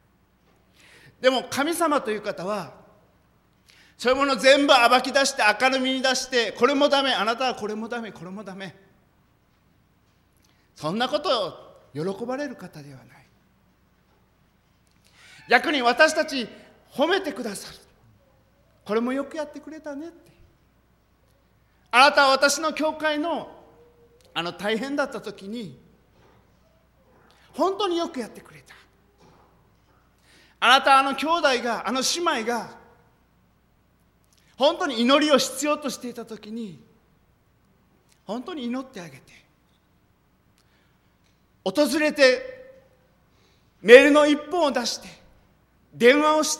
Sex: male